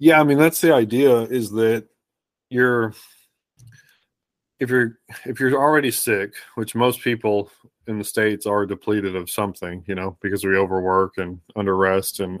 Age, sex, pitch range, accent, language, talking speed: 30-49, male, 95-115 Hz, American, English, 160 wpm